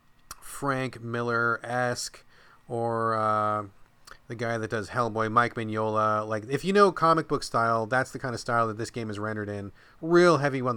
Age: 30-49